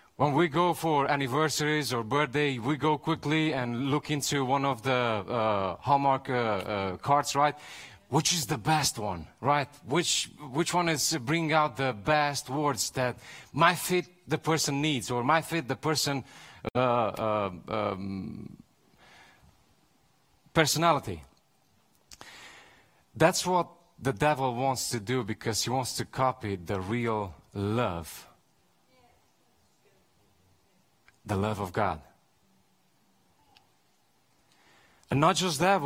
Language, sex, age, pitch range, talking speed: English, male, 40-59, 115-155 Hz, 125 wpm